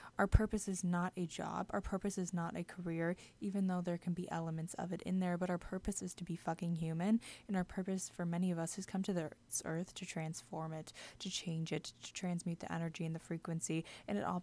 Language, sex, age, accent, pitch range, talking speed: English, female, 20-39, American, 165-185 Hz, 240 wpm